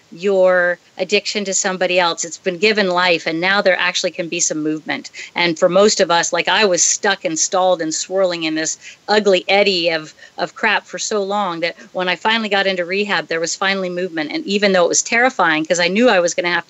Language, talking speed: English, 235 wpm